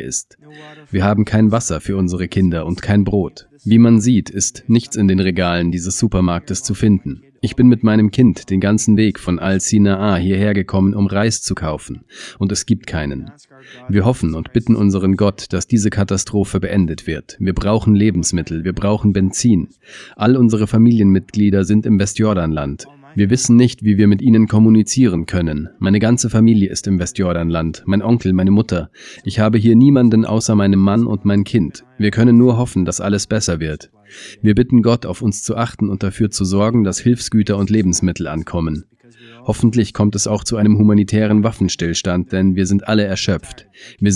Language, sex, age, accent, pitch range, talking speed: German, male, 40-59, German, 95-110 Hz, 180 wpm